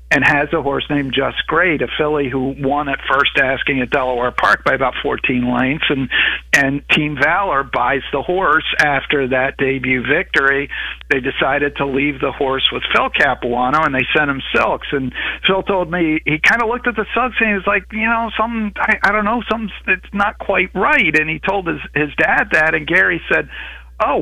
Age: 50-69